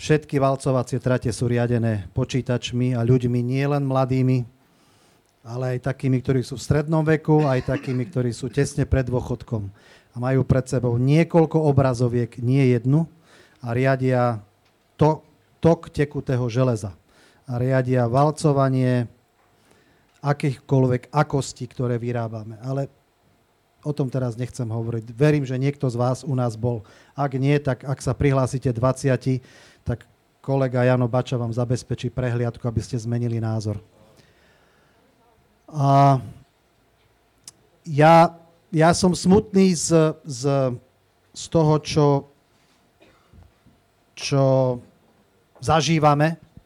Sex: male